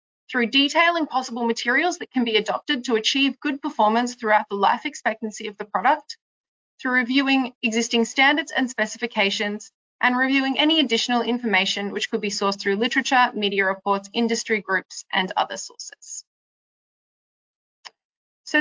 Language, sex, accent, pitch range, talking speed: English, female, Australian, 220-290 Hz, 140 wpm